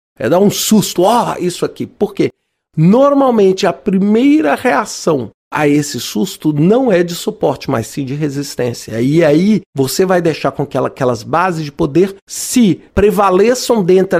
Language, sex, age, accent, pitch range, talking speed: Portuguese, male, 40-59, Brazilian, 140-200 Hz, 160 wpm